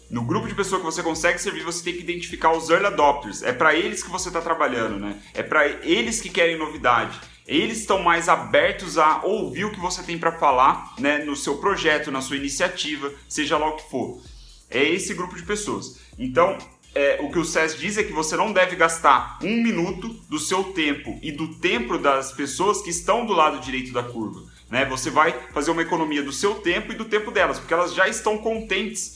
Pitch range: 145-180 Hz